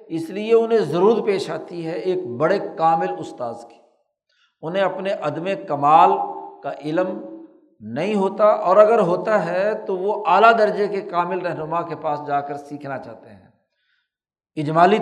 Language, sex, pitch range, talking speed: Urdu, male, 145-185 Hz, 155 wpm